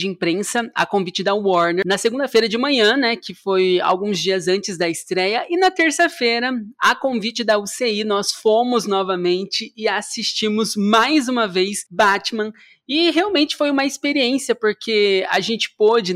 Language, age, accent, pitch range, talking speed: Portuguese, 20-39, Brazilian, 200-255 Hz, 160 wpm